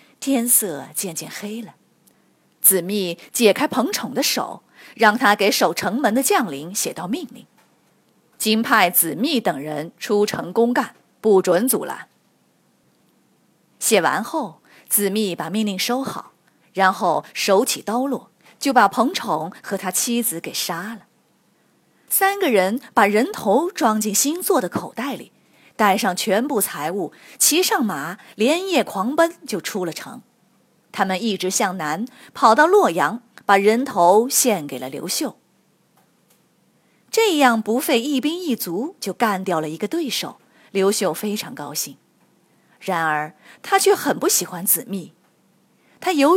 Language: Chinese